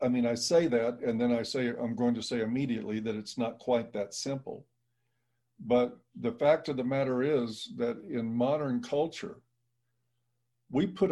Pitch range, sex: 120-130 Hz, male